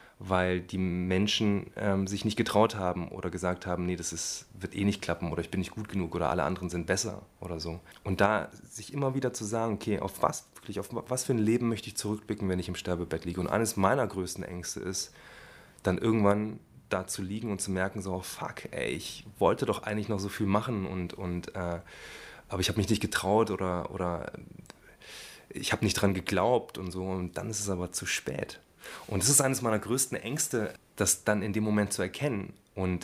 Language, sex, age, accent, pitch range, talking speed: German, male, 20-39, German, 90-110 Hz, 220 wpm